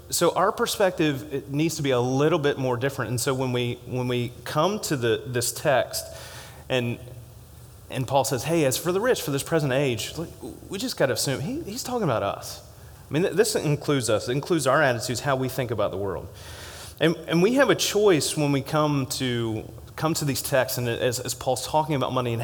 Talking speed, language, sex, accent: 220 wpm, English, male, American